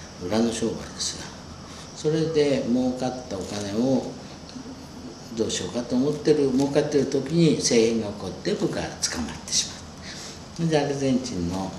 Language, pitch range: Japanese, 85-125 Hz